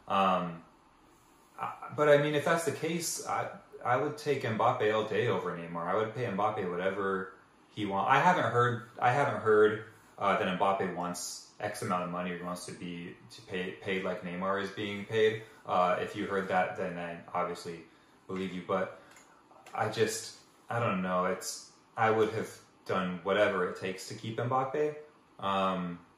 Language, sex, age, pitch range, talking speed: English, male, 20-39, 90-110 Hz, 180 wpm